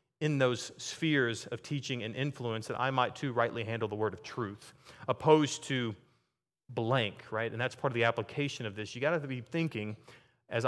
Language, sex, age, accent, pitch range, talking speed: English, male, 30-49, American, 115-140 Hz, 195 wpm